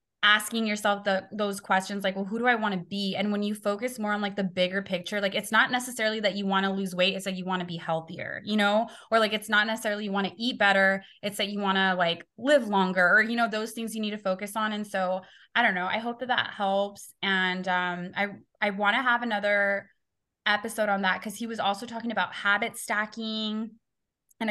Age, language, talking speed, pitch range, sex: 20-39, English, 245 wpm, 185-215 Hz, female